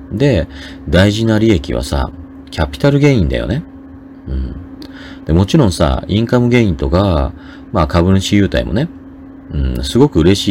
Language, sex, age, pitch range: Japanese, male, 40-59, 70-115 Hz